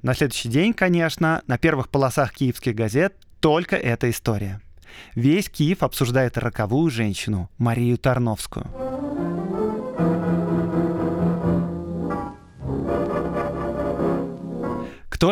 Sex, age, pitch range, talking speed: male, 20-39, 125-170 Hz, 80 wpm